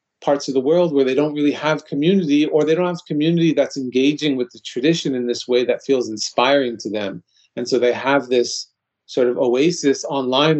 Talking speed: 210 wpm